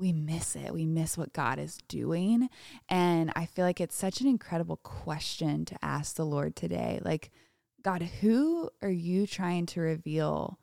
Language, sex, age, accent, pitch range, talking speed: English, female, 20-39, American, 165-190 Hz, 175 wpm